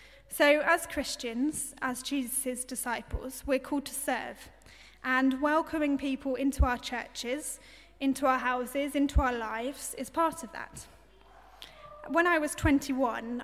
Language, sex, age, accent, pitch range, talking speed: English, female, 10-29, British, 250-290 Hz, 135 wpm